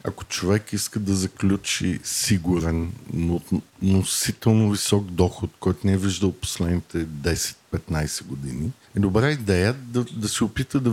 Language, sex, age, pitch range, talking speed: Bulgarian, male, 50-69, 100-125 Hz, 135 wpm